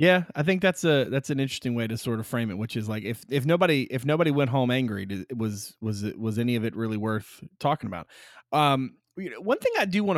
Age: 30-49